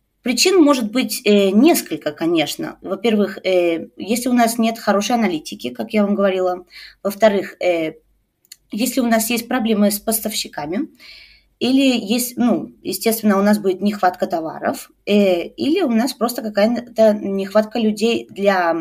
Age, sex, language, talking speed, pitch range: 20-39, female, Russian, 145 wpm, 185-245 Hz